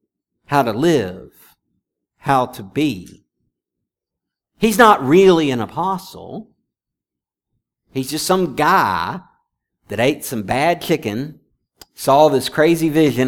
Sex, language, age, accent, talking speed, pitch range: male, English, 50-69, American, 110 wpm, 130-190 Hz